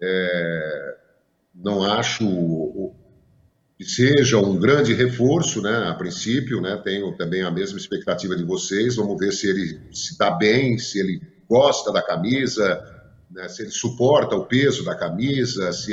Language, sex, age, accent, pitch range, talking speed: Portuguese, male, 50-69, Brazilian, 100-155 Hz, 150 wpm